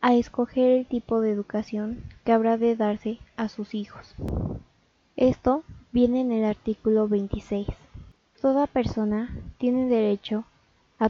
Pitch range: 215-240 Hz